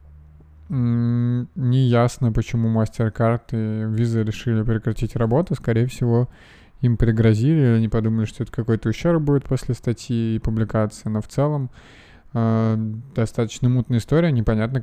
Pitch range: 110-120 Hz